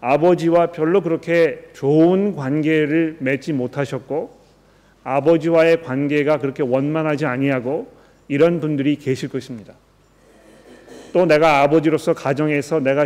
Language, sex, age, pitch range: Korean, male, 40-59, 140-170 Hz